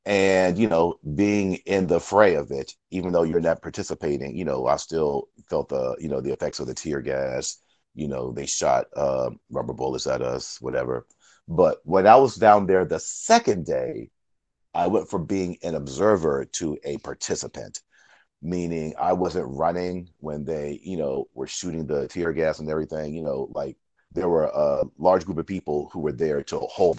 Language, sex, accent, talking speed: English, male, American, 190 wpm